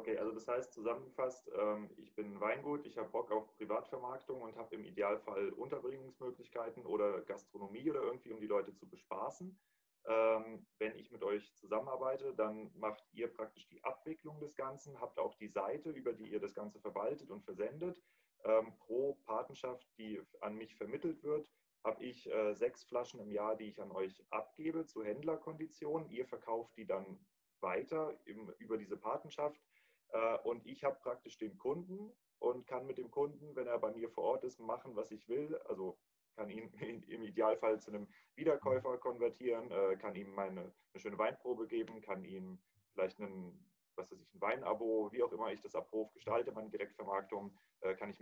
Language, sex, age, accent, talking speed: German, male, 30-49, German, 165 wpm